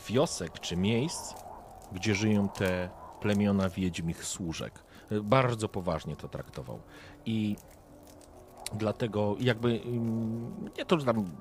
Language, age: Polish, 40-59